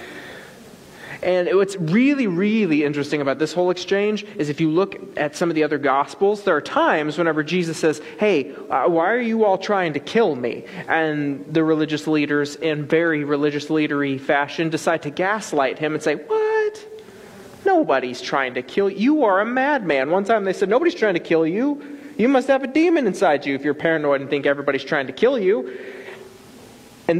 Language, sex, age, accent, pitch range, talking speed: English, male, 30-49, American, 145-200 Hz, 190 wpm